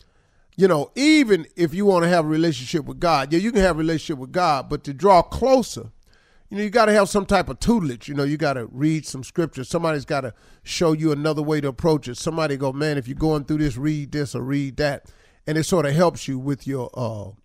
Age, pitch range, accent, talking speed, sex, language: 40-59, 130-175 Hz, American, 255 wpm, male, English